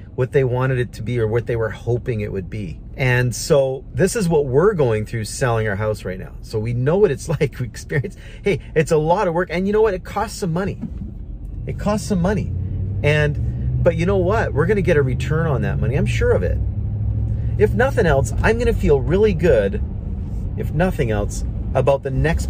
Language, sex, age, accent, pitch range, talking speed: English, male, 40-59, American, 100-140 Hz, 225 wpm